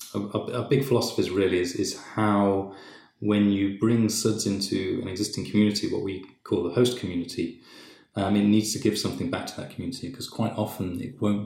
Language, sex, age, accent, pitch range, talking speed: English, male, 30-49, British, 90-105 Hz, 200 wpm